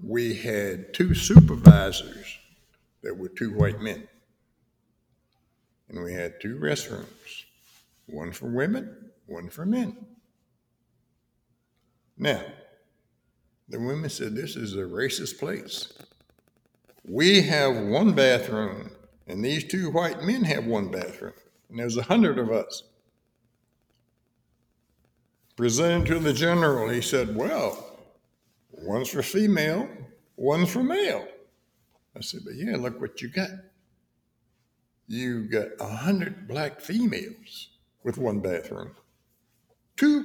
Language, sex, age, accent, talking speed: English, male, 60-79, American, 115 wpm